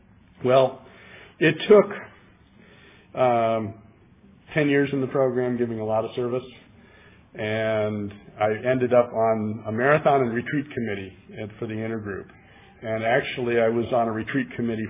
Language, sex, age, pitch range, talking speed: English, male, 50-69, 110-135 Hz, 145 wpm